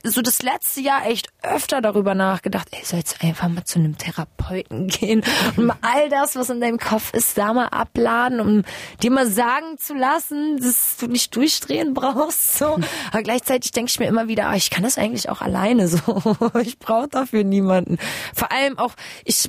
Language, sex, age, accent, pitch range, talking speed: German, female, 20-39, German, 205-245 Hz, 195 wpm